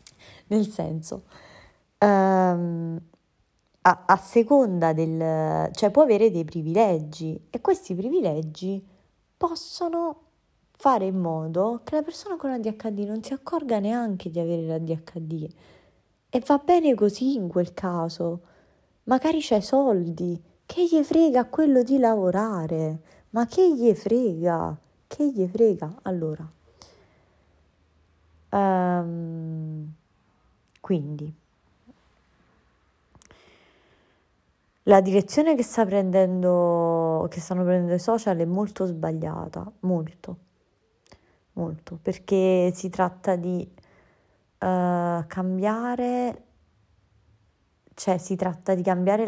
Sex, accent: female, native